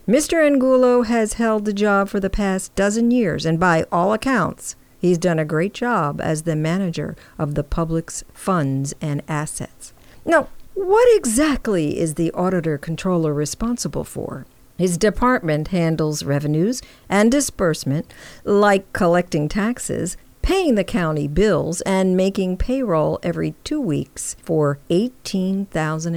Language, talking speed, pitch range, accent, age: English, 135 wpm, 155-220 Hz, American, 50-69